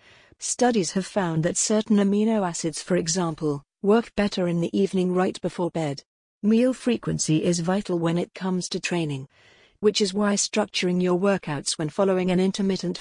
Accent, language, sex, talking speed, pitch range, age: British, English, female, 165 wpm, 170-205 Hz, 50-69